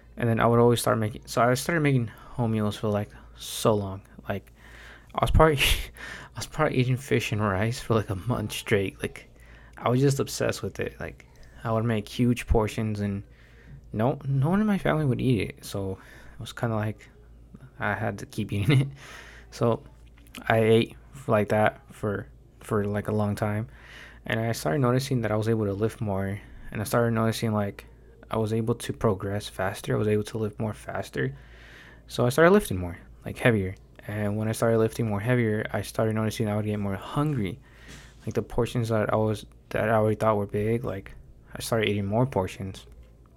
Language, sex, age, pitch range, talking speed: English, male, 20-39, 105-120 Hz, 205 wpm